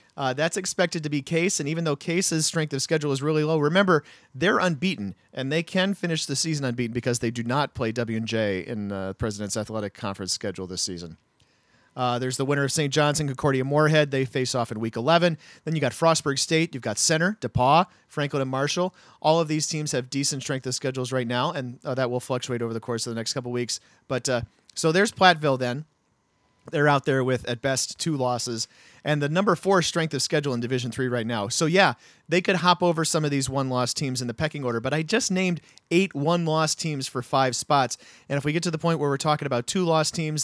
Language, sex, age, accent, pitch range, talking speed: English, male, 40-59, American, 125-160 Hz, 235 wpm